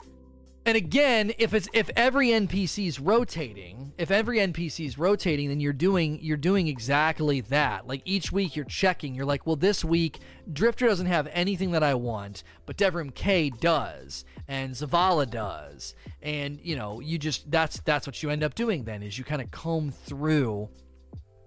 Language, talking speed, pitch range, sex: English, 180 wpm, 135-190 Hz, male